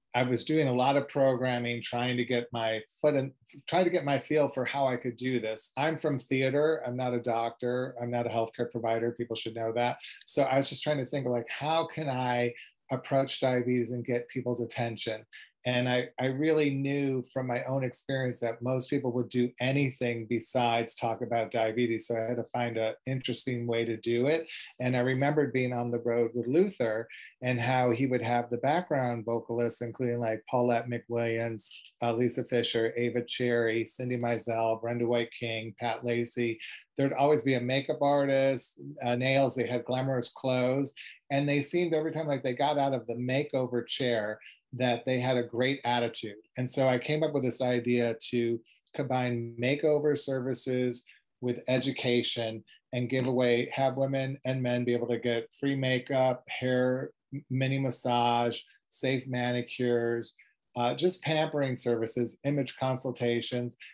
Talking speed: 180 wpm